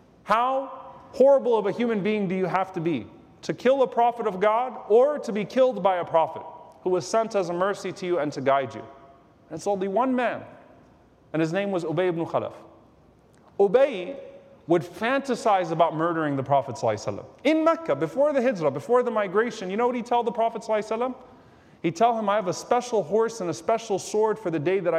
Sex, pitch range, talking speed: male, 165-225 Hz, 210 wpm